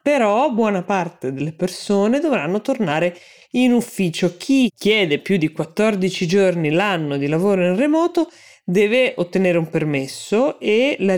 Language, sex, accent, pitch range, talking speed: Italian, female, native, 155-210 Hz, 140 wpm